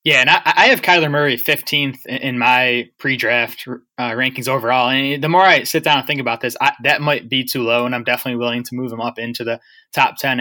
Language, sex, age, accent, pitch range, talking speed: English, male, 20-39, American, 120-140 Hz, 230 wpm